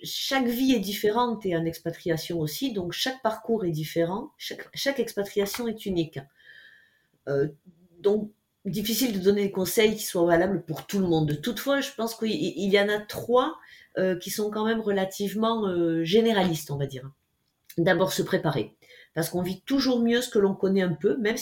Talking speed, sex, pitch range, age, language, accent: 185 wpm, female, 165-220 Hz, 30-49, French, French